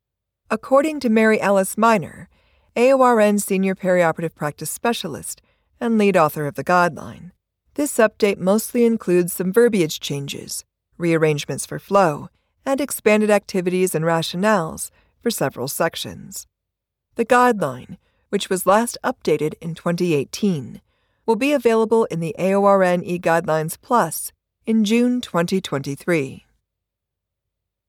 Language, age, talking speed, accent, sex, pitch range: English, 40-59, 115 wpm, American, female, 160-220 Hz